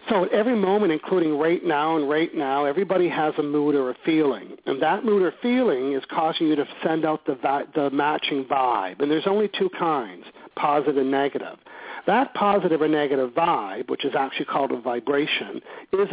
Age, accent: 50-69, American